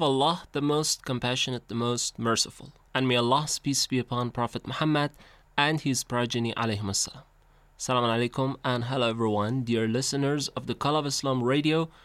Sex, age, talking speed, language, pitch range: male, 30-49, 155 wpm, Persian, 115-145 Hz